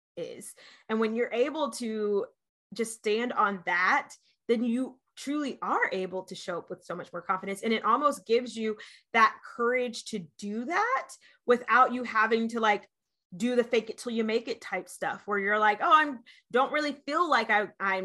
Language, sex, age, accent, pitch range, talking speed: English, female, 20-39, American, 200-255 Hz, 195 wpm